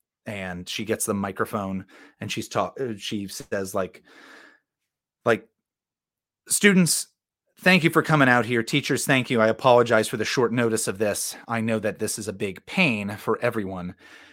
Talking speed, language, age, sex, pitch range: 165 wpm, English, 30-49, male, 115-175 Hz